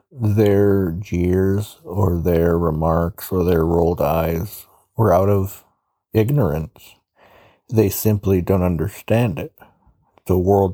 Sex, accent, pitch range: male, American, 90-105 Hz